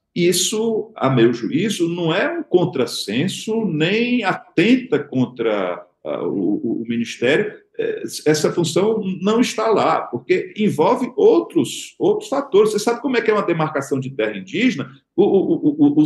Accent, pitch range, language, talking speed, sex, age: Brazilian, 160-255 Hz, Portuguese, 145 wpm, male, 50-69